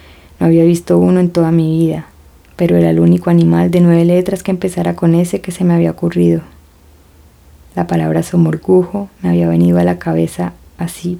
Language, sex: Spanish, female